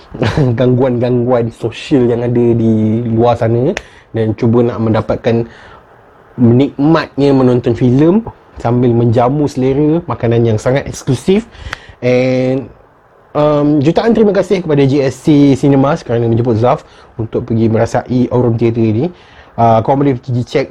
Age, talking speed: 20-39, 130 wpm